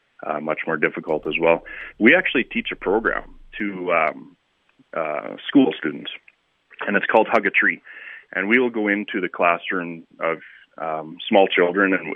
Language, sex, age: English, male, 30-49